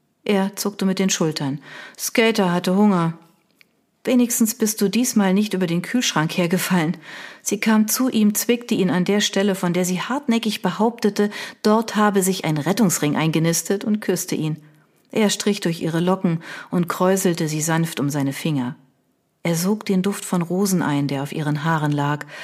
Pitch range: 160-210 Hz